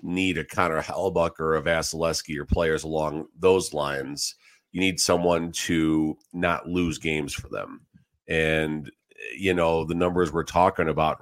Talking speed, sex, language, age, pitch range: 155 wpm, male, English, 40-59, 80-95 Hz